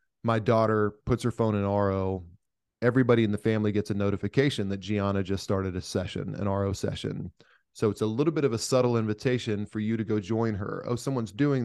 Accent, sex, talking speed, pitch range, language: American, male, 210 wpm, 100-115 Hz, English